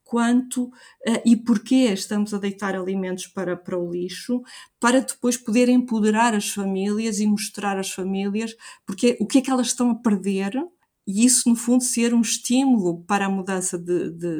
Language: Portuguese